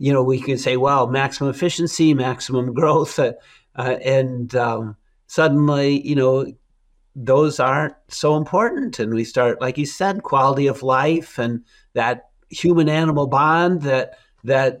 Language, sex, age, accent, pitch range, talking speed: English, male, 50-69, American, 130-160 Hz, 150 wpm